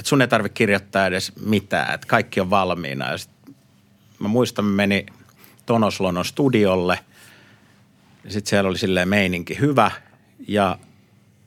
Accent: native